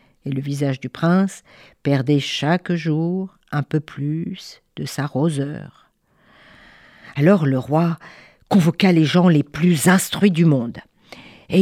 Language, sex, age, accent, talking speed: French, female, 50-69, French, 135 wpm